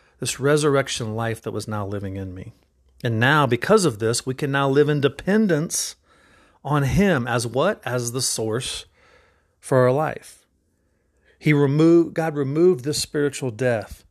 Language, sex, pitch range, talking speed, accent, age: English, male, 125-160 Hz, 155 wpm, American, 40-59